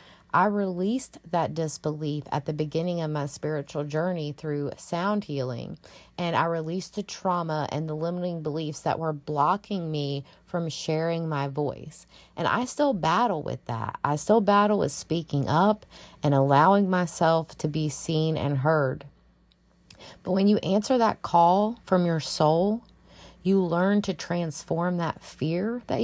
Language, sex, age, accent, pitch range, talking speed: English, female, 30-49, American, 155-195 Hz, 155 wpm